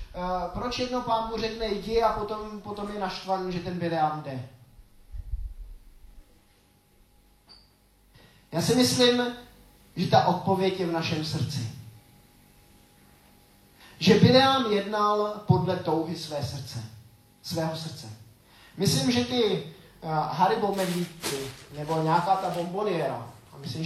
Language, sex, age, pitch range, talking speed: Czech, male, 20-39, 150-190 Hz, 120 wpm